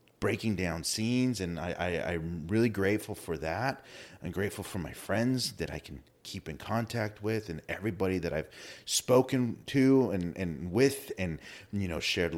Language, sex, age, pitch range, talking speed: English, male, 30-49, 85-110 Hz, 175 wpm